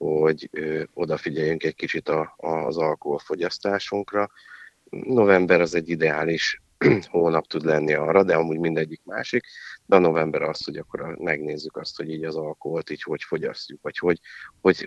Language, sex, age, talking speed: Hungarian, male, 50-69, 140 wpm